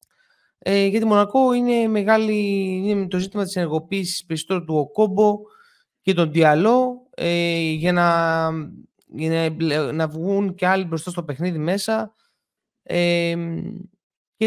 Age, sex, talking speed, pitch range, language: 20-39, male, 125 wpm, 155-210 Hz, Greek